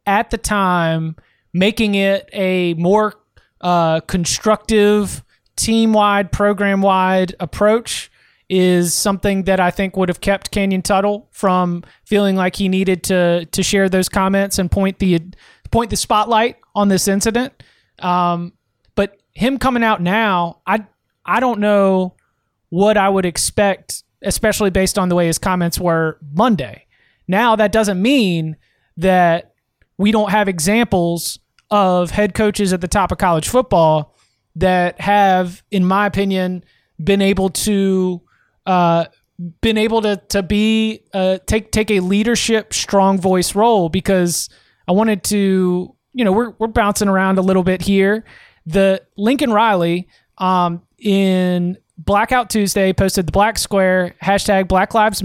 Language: English